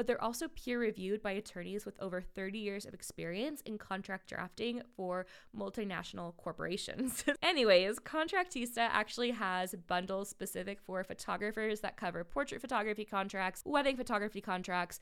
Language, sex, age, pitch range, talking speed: English, female, 20-39, 195-240 Hz, 135 wpm